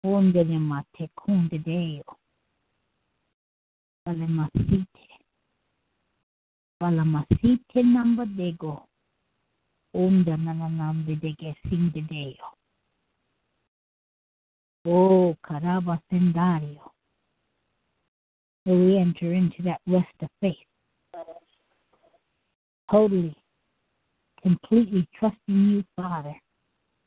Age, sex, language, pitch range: 60-79, female, English, 160-225 Hz